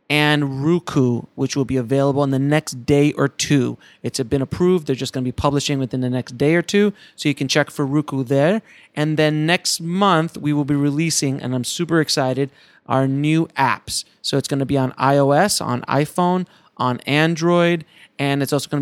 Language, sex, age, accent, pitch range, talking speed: English, male, 30-49, American, 135-170 Hz, 205 wpm